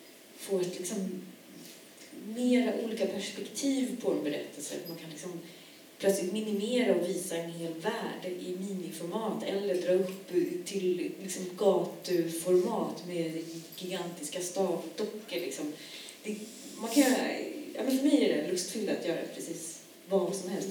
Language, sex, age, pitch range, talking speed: Swedish, female, 30-49, 170-230 Hz, 130 wpm